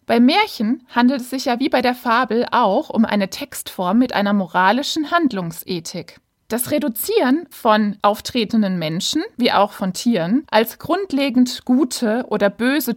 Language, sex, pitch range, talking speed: German, female, 200-270 Hz, 150 wpm